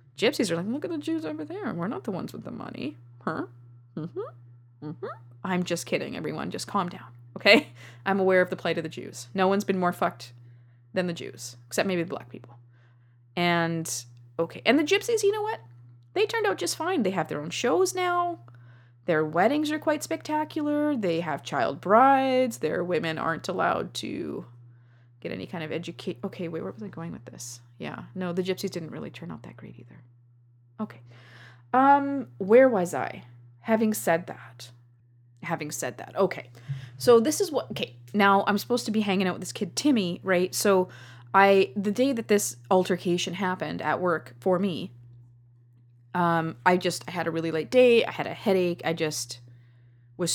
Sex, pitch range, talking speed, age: female, 120-200 Hz, 195 wpm, 20-39